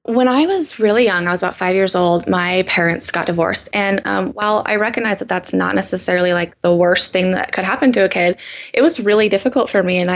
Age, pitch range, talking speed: 10-29, 180-210 Hz, 240 wpm